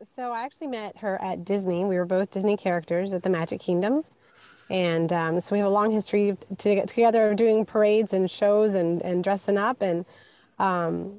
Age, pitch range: 30-49, 175-215 Hz